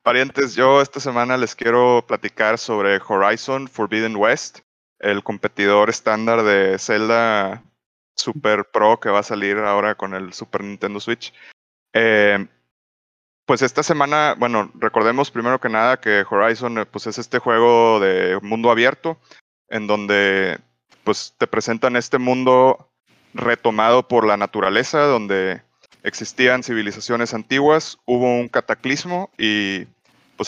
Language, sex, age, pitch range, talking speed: English, male, 30-49, 100-125 Hz, 125 wpm